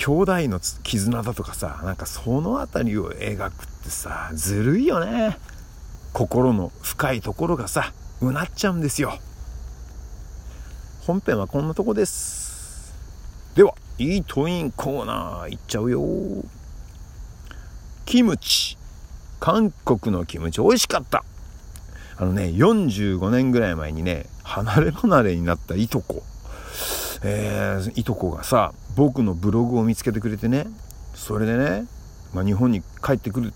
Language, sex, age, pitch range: Japanese, male, 50-69, 80-125 Hz